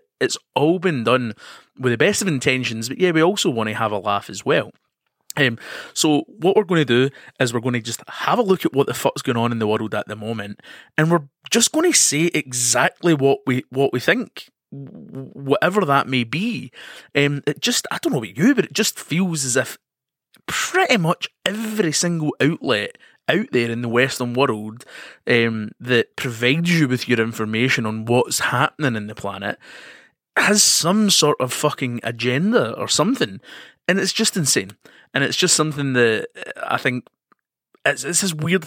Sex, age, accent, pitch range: male, 20-39, British, 120-165 Hz